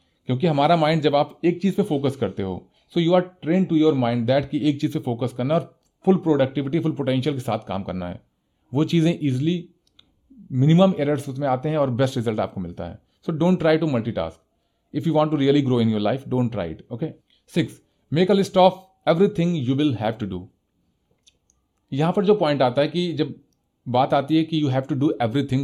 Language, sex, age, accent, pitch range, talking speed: Hindi, male, 40-59, native, 120-165 Hz, 225 wpm